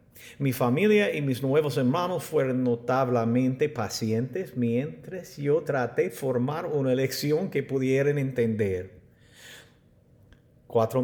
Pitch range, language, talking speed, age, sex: 115-160 Hz, English, 110 wpm, 50-69, male